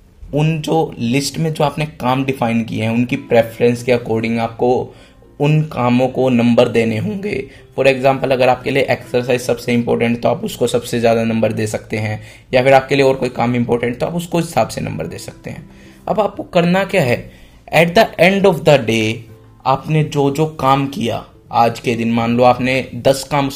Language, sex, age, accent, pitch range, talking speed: Hindi, male, 20-39, native, 115-140 Hz, 200 wpm